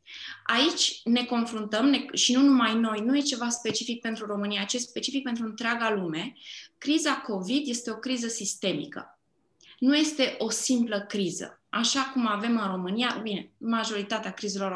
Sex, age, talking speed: female, 20-39, 160 wpm